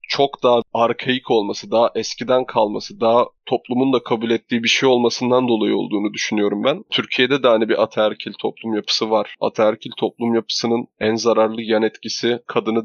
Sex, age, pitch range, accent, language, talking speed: male, 20-39, 110-125 Hz, native, Turkish, 165 wpm